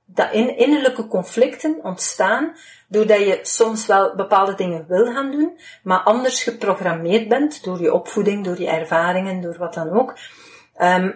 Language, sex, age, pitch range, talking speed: Dutch, female, 40-59, 180-230 Hz, 155 wpm